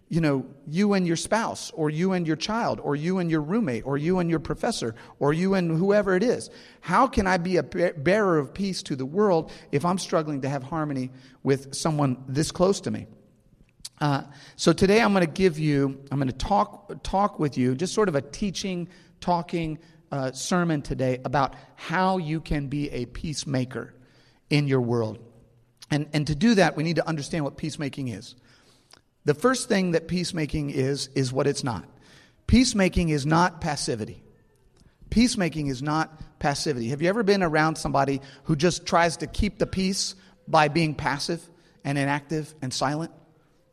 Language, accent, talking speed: English, American, 185 wpm